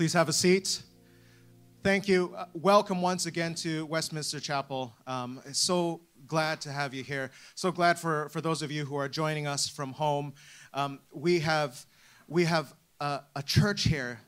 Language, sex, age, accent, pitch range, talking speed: English, male, 30-49, American, 140-180 Hz, 175 wpm